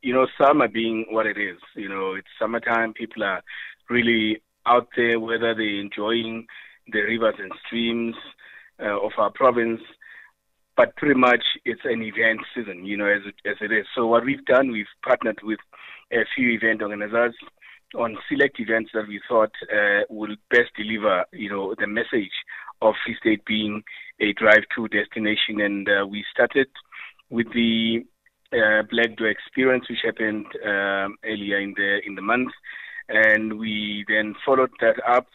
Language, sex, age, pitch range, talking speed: English, male, 30-49, 105-120 Hz, 165 wpm